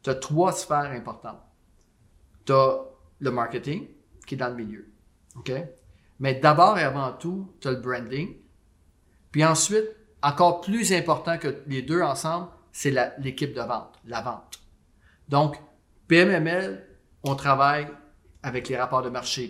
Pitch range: 120-160 Hz